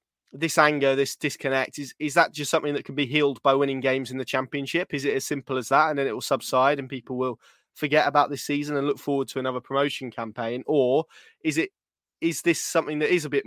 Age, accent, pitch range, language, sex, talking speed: 20-39, British, 130-150 Hz, English, male, 235 wpm